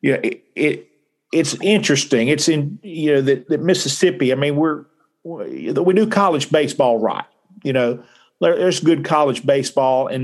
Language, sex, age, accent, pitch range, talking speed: English, male, 50-69, American, 130-150 Hz, 170 wpm